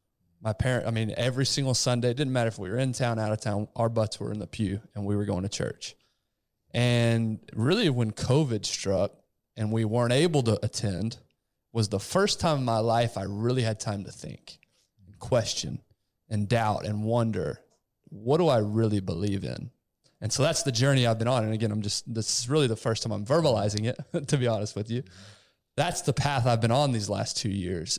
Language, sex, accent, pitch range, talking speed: English, male, American, 110-135 Hz, 215 wpm